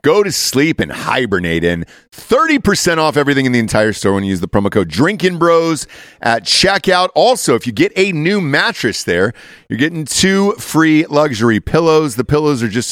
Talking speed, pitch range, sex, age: 185 wpm, 115-160 Hz, male, 40-59